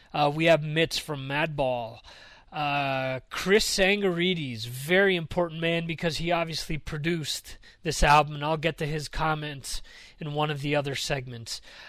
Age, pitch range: 30-49, 145-165 Hz